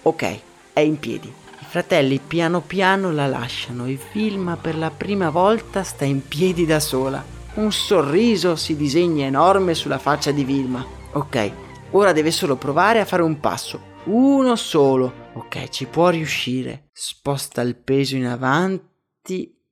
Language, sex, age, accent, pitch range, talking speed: Italian, male, 30-49, native, 140-185 Hz, 150 wpm